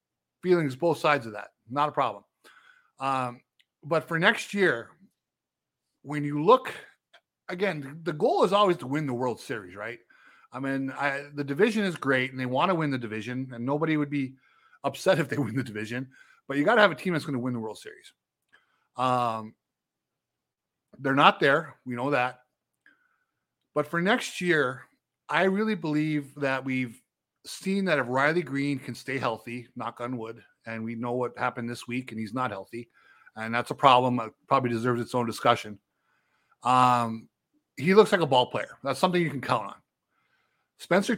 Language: English